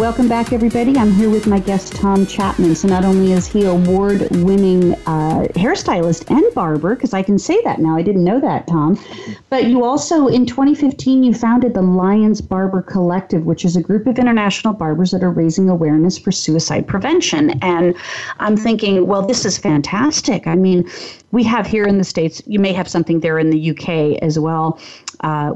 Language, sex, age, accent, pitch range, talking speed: English, female, 40-59, American, 160-205 Hz, 195 wpm